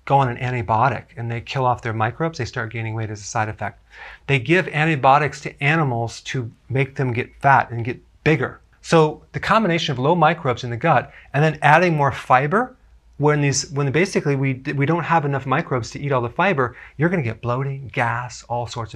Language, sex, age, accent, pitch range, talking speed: English, male, 30-49, American, 120-150 Hz, 215 wpm